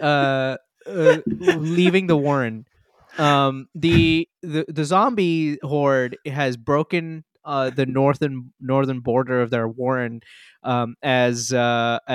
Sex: male